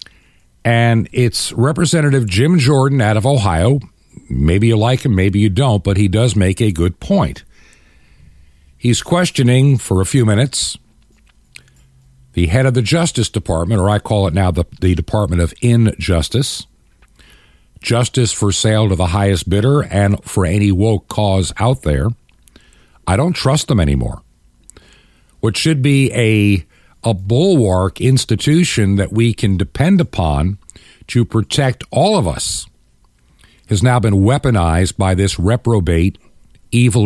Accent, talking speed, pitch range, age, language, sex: American, 140 wpm, 95-130 Hz, 50-69, English, male